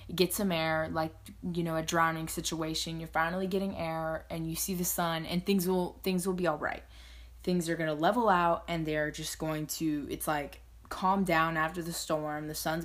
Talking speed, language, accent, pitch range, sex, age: 215 wpm, English, American, 155-180 Hz, female, 20-39